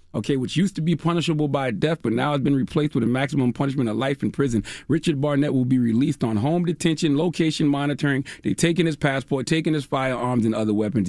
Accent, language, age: American, English, 30-49